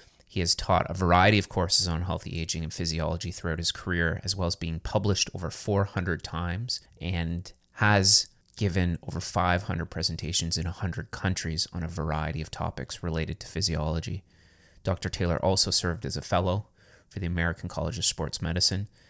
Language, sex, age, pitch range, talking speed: English, male, 30-49, 85-100 Hz, 170 wpm